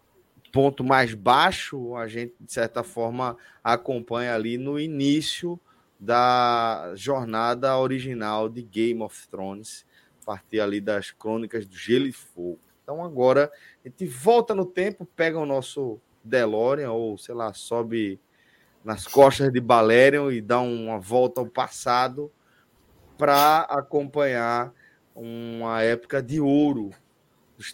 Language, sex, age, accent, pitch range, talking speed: Portuguese, male, 20-39, Brazilian, 120-155 Hz, 130 wpm